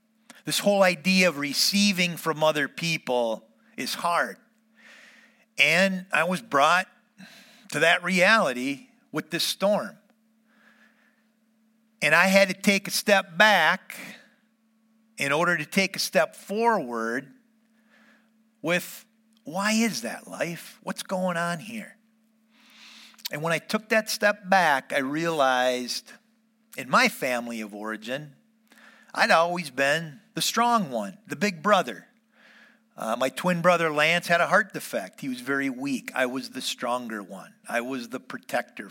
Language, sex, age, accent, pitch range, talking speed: English, male, 50-69, American, 150-225 Hz, 135 wpm